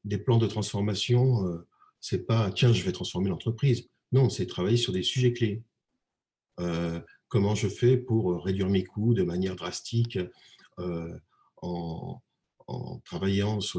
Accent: French